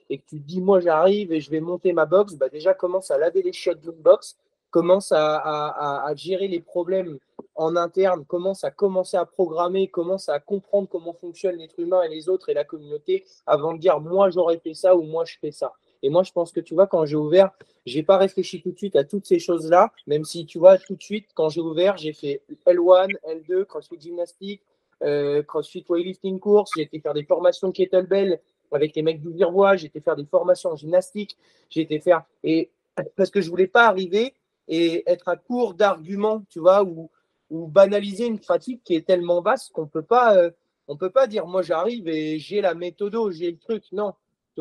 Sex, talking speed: male, 230 wpm